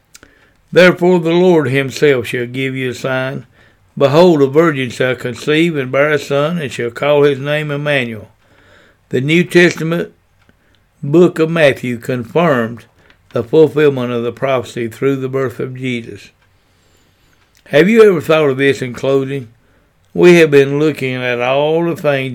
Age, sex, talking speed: 60-79, male, 155 wpm